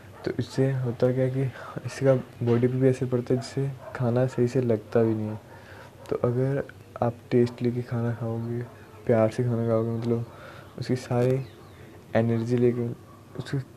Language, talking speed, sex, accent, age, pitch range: Hindi, 160 wpm, male, native, 20-39, 110-125 Hz